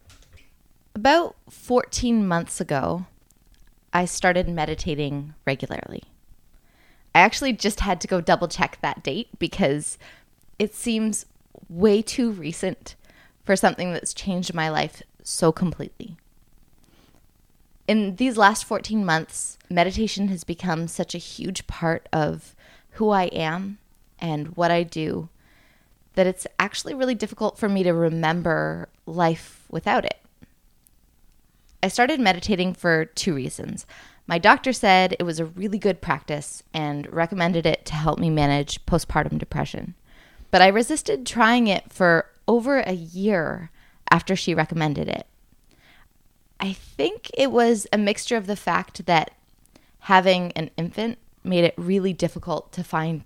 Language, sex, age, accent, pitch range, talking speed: English, female, 20-39, American, 165-210 Hz, 135 wpm